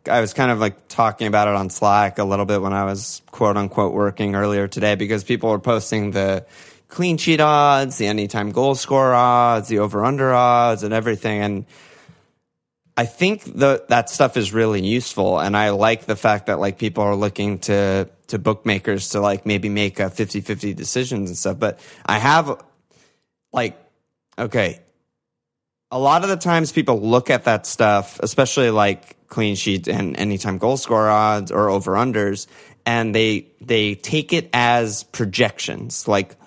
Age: 20-39